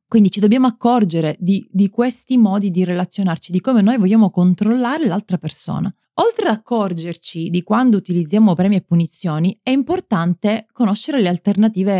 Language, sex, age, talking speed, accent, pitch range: Italian, female, 20-39, 155 wpm, native, 180-240 Hz